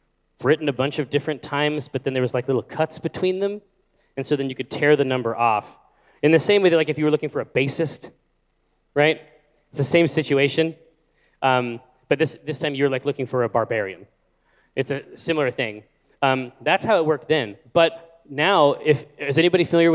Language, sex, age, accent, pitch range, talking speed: English, male, 30-49, American, 130-160 Hz, 210 wpm